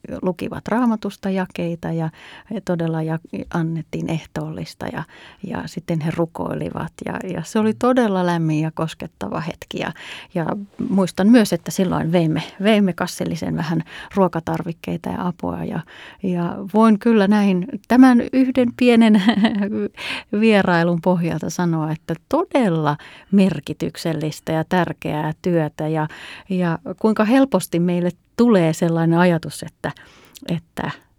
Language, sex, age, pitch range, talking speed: Finnish, female, 30-49, 160-195 Hz, 115 wpm